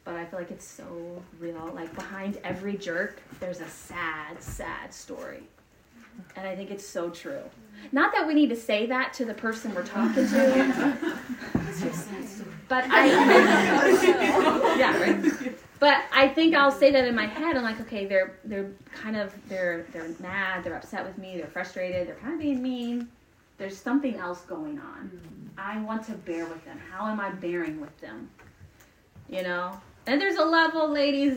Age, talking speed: 30-49, 180 wpm